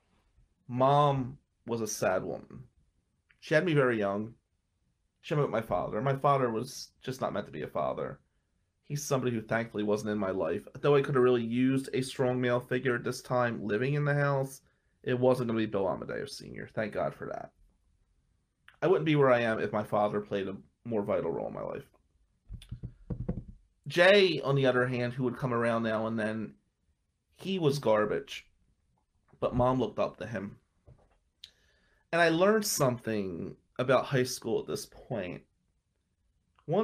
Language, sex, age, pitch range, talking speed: English, male, 30-49, 100-130 Hz, 180 wpm